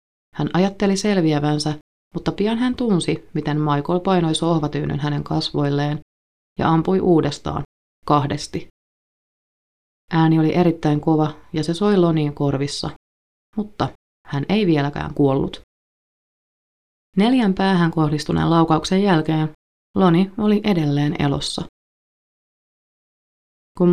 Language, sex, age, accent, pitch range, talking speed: Finnish, female, 30-49, native, 150-180 Hz, 105 wpm